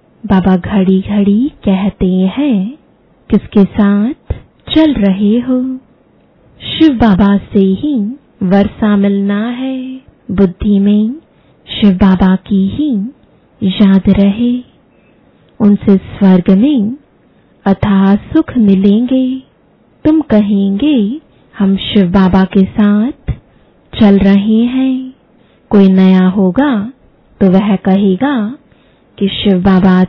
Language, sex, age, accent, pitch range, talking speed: English, female, 20-39, Indian, 195-245 Hz, 100 wpm